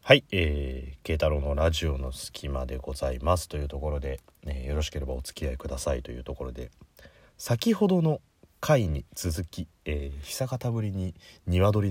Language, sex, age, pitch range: Japanese, male, 30-49, 80-110 Hz